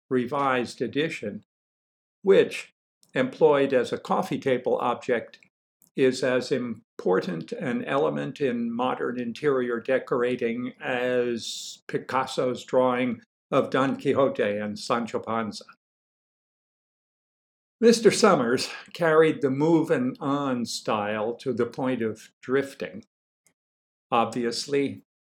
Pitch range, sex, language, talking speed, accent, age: 120-150 Hz, male, English, 95 wpm, American, 60-79